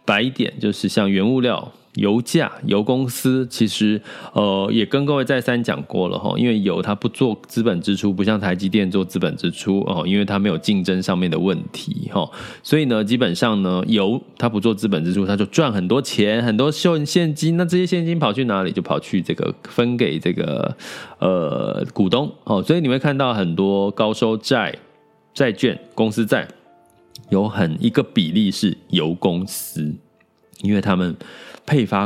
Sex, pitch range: male, 95-130 Hz